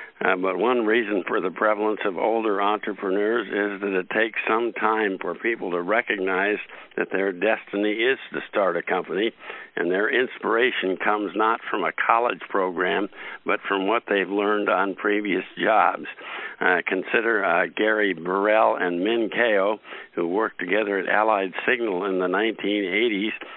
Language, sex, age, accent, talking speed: English, male, 60-79, American, 160 wpm